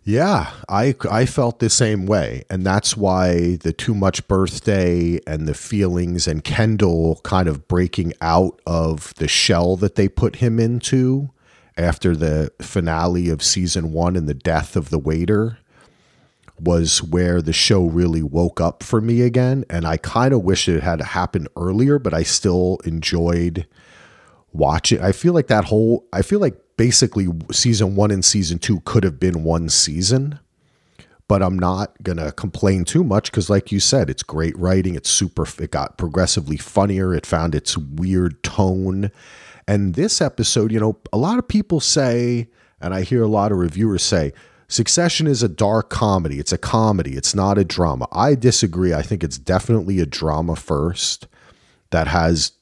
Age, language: 40-59, English